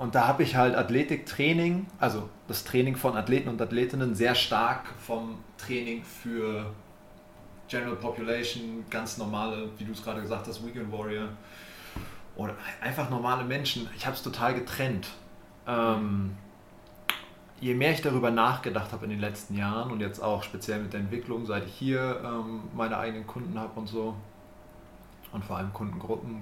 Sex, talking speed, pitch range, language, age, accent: male, 160 wpm, 100-120 Hz, German, 30-49, German